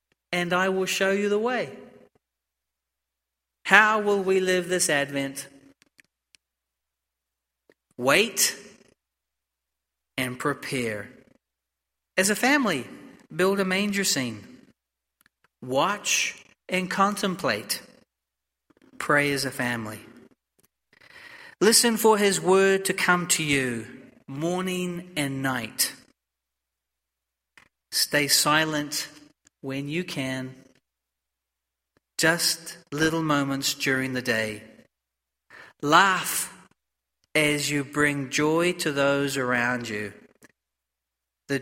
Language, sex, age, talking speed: English, male, 40-59, 90 wpm